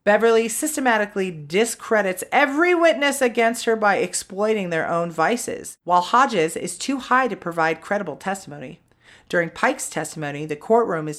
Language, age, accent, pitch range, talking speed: English, 30-49, American, 160-230 Hz, 145 wpm